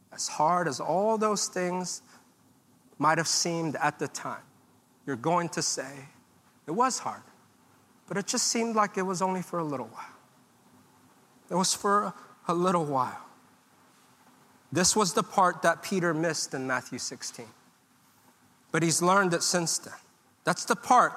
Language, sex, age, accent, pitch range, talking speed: English, male, 40-59, American, 170-255 Hz, 155 wpm